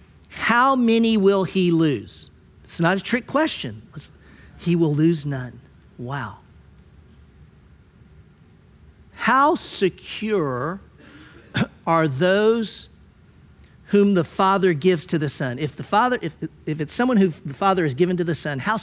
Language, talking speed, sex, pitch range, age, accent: English, 135 wpm, male, 135-180 Hz, 50-69, American